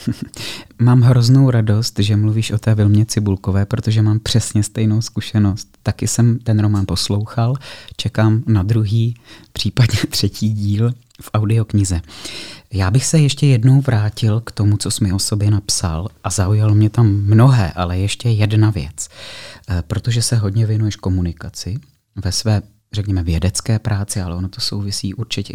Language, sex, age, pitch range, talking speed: Czech, male, 30-49, 100-120 Hz, 155 wpm